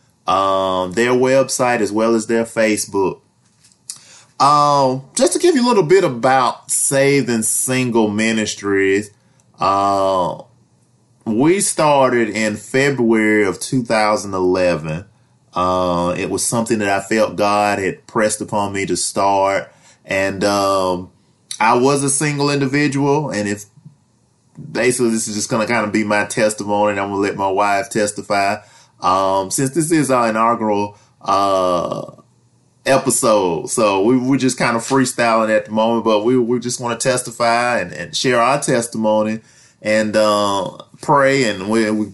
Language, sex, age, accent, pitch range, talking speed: English, male, 20-39, American, 105-125 Hz, 150 wpm